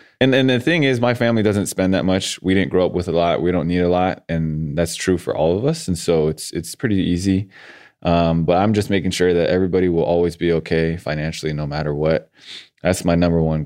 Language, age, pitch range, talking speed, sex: English, 20-39, 80-95 Hz, 245 wpm, male